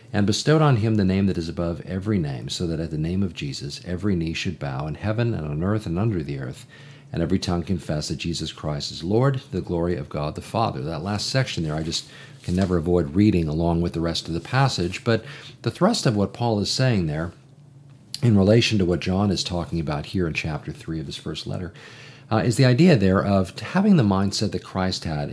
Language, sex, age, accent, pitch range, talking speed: English, male, 50-69, American, 85-120 Hz, 235 wpm